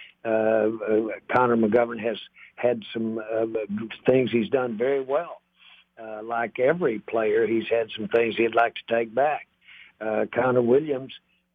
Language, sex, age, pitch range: English, male, 60-79, 110-125 Hz